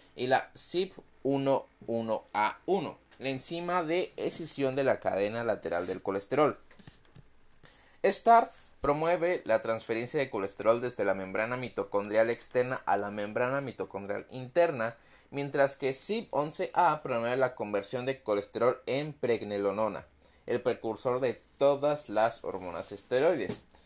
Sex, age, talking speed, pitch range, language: male, 30-49, 115 wpm, 110-140 Hz, Spanish